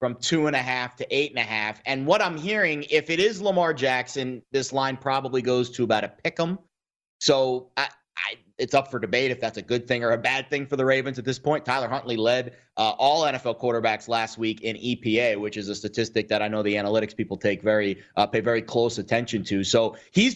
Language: English